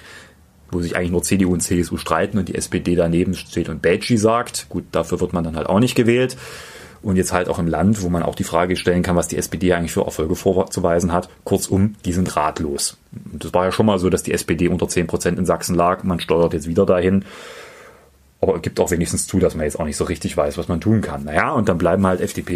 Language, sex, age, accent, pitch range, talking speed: German, male, 30-49, German, 85-105 Hz, 250 wpm